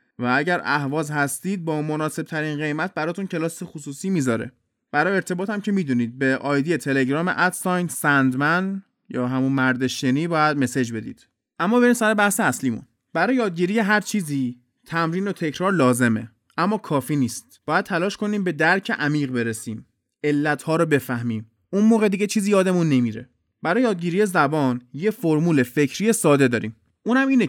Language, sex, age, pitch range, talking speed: Persian, male, 20-39, 135-195 Hz, 155 wpm